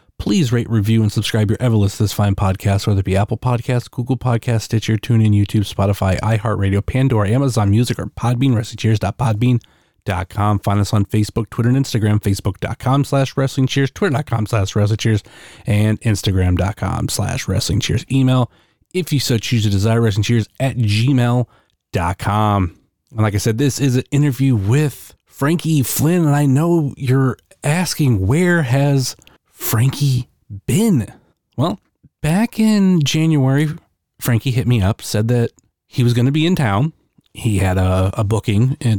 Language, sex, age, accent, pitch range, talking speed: English, male, 30-49, American, 105-130 Hz, 160 wpm